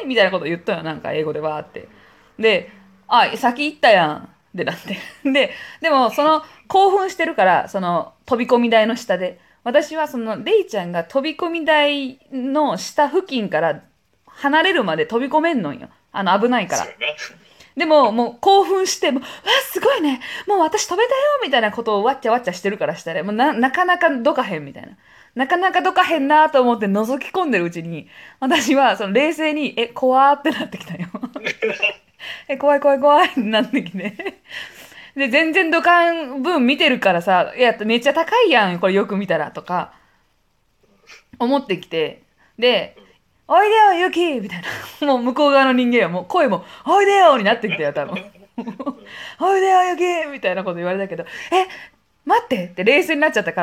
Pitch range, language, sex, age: 210-325 Hz, Japanese, female, 20-39